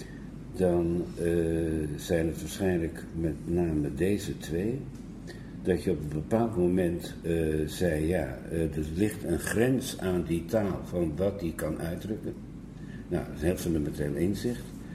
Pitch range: 85-105 Hz